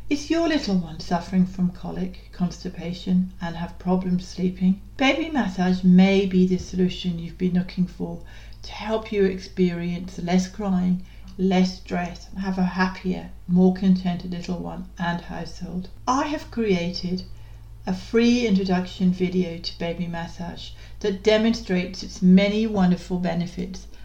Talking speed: 140 wpm